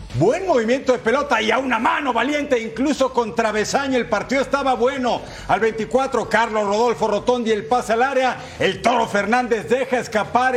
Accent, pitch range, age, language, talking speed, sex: Mexican, 205-255 Hz, 50-69, Spanish, 170 wpm, male